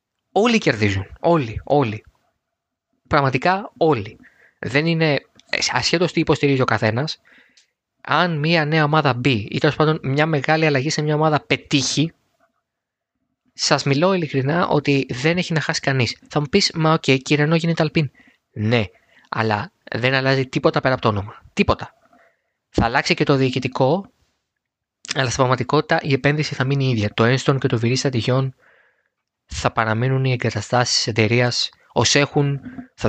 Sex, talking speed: male, 145 wpm